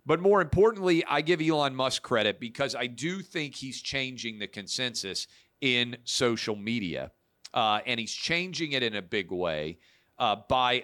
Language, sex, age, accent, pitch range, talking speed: English, male, 40-59, American, 100-135 Hz, 165 wpm